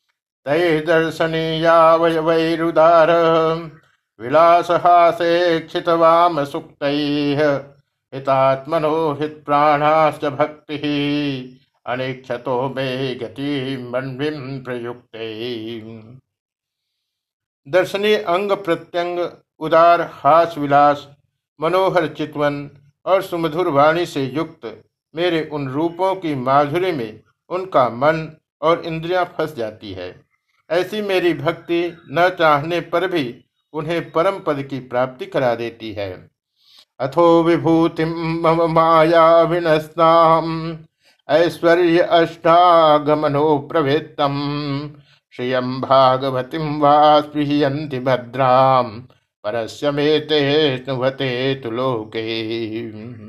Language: Hindi